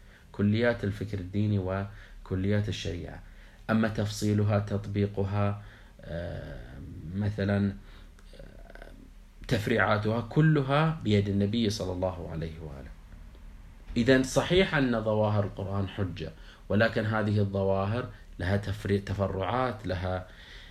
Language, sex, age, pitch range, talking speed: Arabic, male, 30-49, 95-110 Hz, 85 wpm